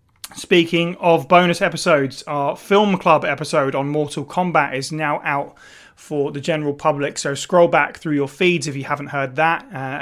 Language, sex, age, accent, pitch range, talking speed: English, male, 30-49, British, 140-185 Hz, 180 wpm